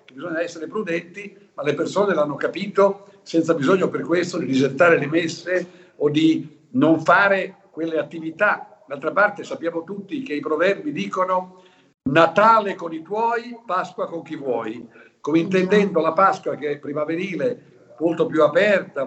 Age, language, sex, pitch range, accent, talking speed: 60-79, Italian, male, 155-195 Hz, native, 150 wpm